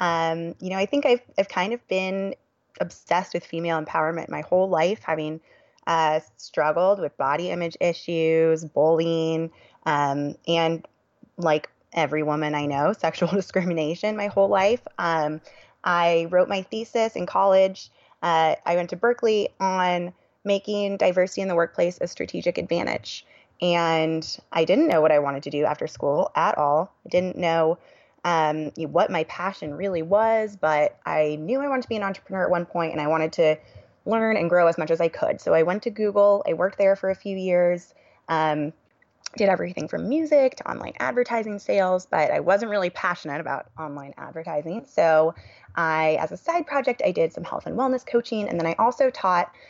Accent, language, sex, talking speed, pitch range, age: American, English, female, 180 wpm, 160-195 Hz, 20-39